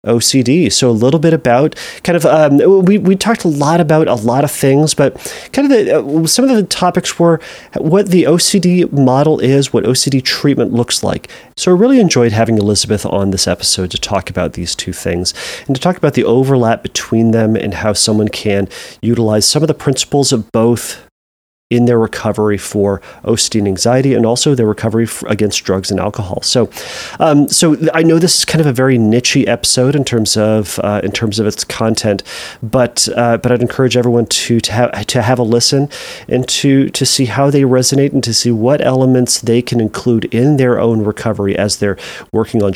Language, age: English, 30-49